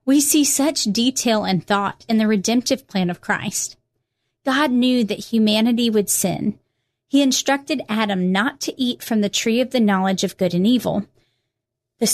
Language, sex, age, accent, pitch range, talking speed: English, female, 30-49, American, 185-250 Hz, 175 wpm